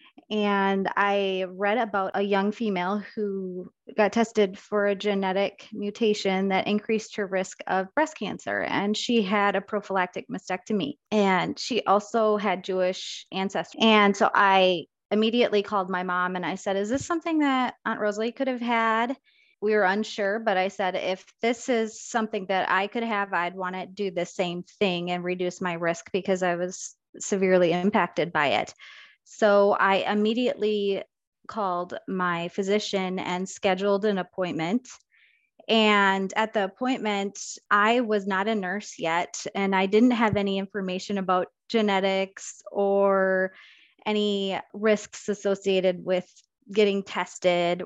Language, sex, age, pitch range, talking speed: English, female, 30-49, 195-230 Hz, 150 wpm